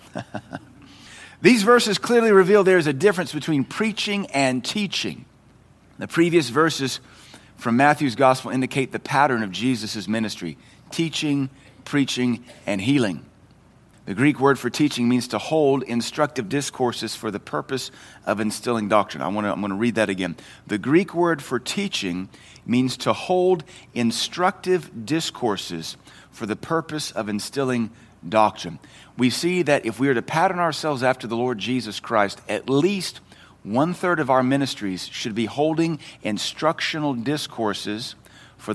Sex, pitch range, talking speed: male, 115-160 Hz, 145 wpm